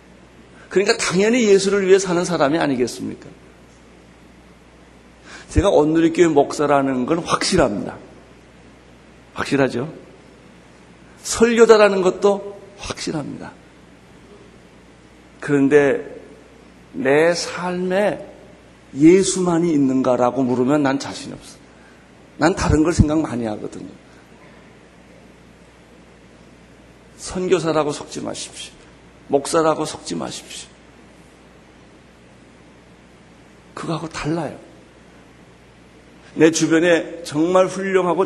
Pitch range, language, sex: 140-195 Hz, Korean, male